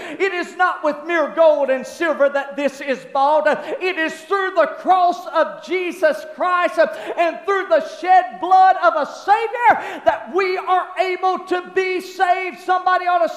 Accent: American